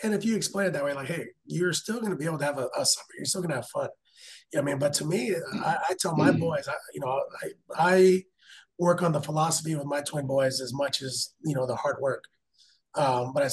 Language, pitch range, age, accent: English, 135-170 Hz, 30-49, American